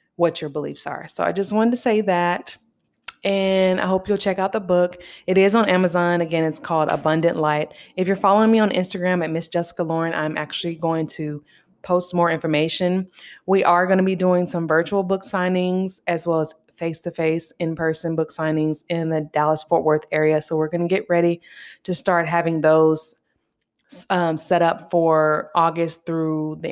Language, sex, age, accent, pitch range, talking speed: English, female, 20-39, American, 160-190 Hz, 190 wpm